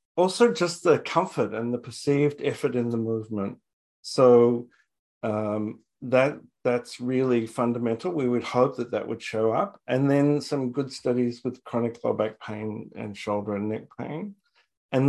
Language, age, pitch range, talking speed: English, 50-69, 115-145 Hz, 165 wpm